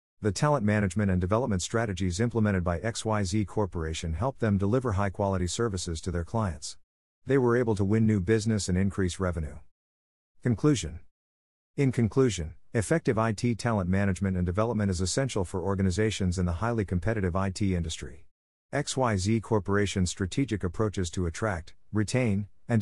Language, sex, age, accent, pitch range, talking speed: English, male, 50-69, American, 90-115 Hz, 145 wpm